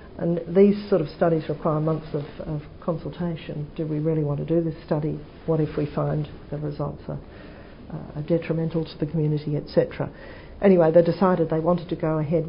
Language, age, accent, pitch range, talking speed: English, 50-69, Australian, 150-170 Hz, 190 wpm